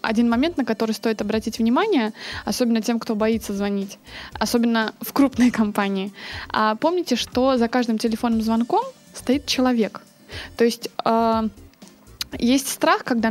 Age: 20-39